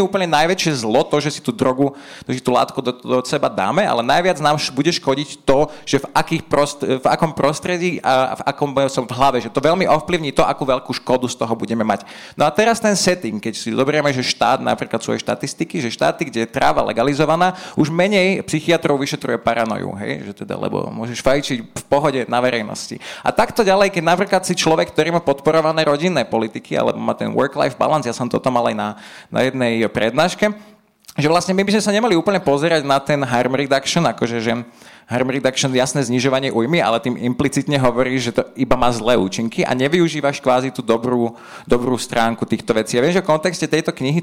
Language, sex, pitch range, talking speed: Slovak, male, 125-160 Hz, 210 wpm